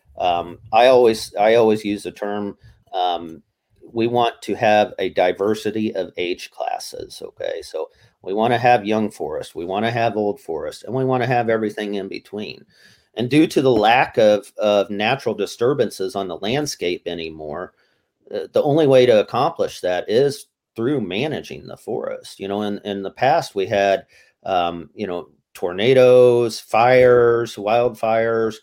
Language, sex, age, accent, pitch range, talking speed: English, male, 40-59, American, 100-125 Hz, 165 wpm